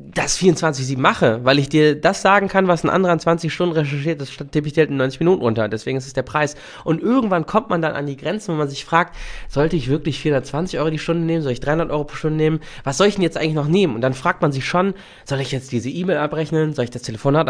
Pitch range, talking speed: 140-170 Hz, 275 wpm